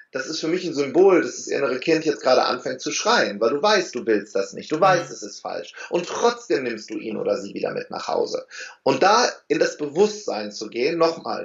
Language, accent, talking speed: German, German, 240 wpm